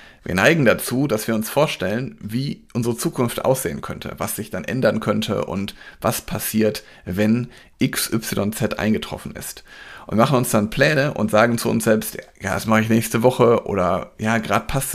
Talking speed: 175 wpm